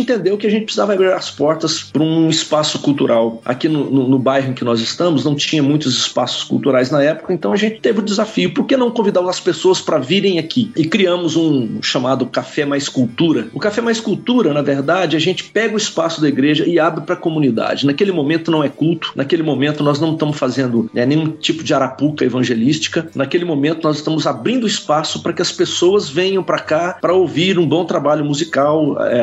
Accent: Brazilian